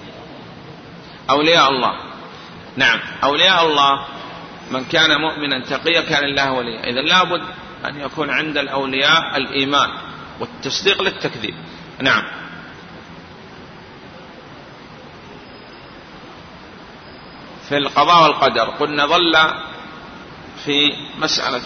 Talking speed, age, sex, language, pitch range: 80 wpm, 40-59, male, Arabic, 135-155 Hz